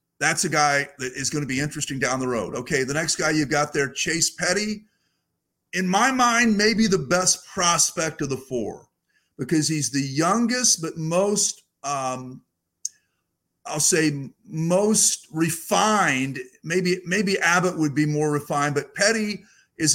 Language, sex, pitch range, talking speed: English, male, 145-190 Hz, 155 wpm